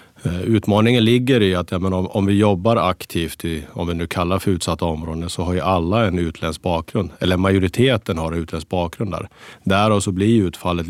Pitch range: 85-110 Hz